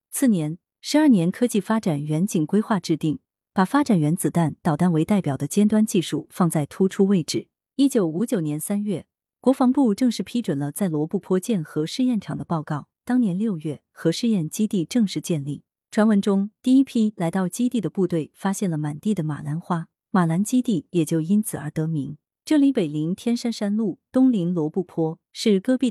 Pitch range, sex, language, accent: 160-230 Hz, female, Chinese, native